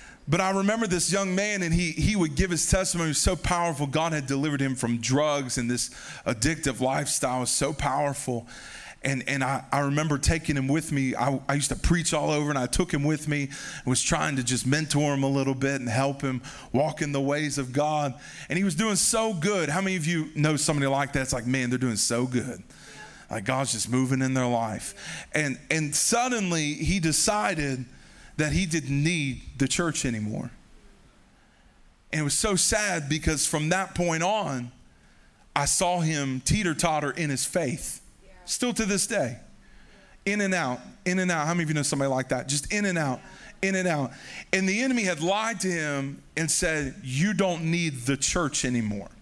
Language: English